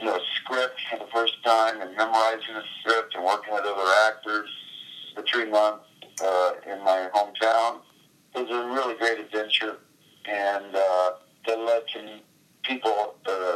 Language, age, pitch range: English, 50-69, 100-120 Hz